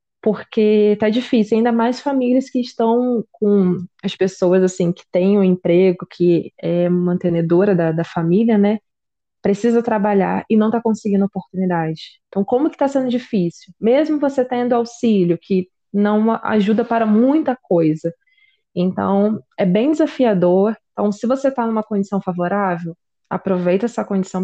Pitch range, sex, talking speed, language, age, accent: 180-225 Hz, female, 145 wpm, Portuguese, 20-39, Brazilian